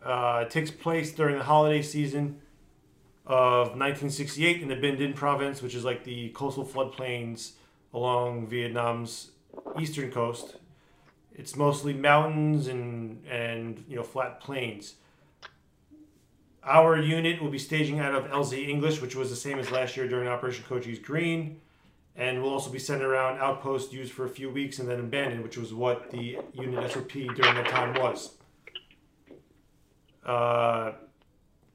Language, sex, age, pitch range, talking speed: English, male, 40-59, 125-150 Hz, 150 wpm